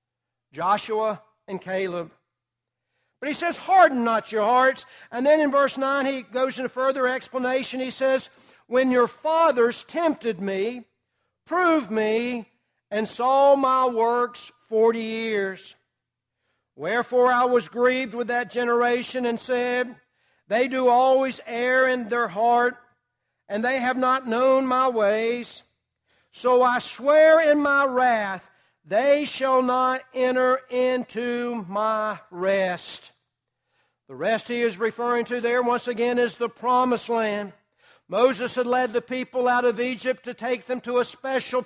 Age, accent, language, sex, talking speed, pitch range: 60-79, American, English, male, 140 wpm, 230-255 Hz